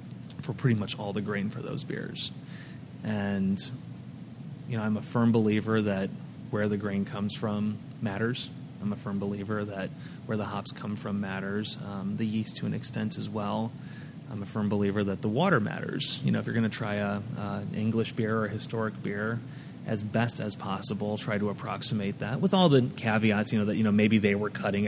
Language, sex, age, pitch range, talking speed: English, male, 30-49, 105-120 Hz, 205 wpm